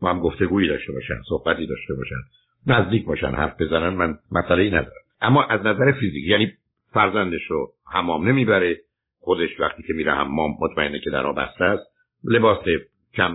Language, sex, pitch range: Persian, male, 90-130 Hz